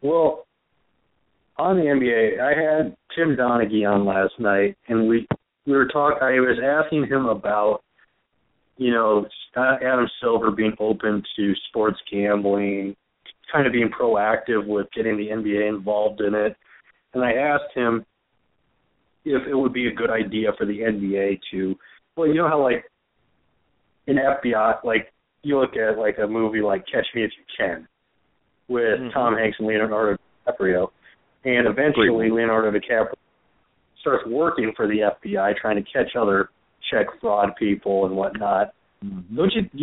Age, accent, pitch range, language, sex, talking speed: 40-59, American, 105-130 Hz, English, male, 155 wpm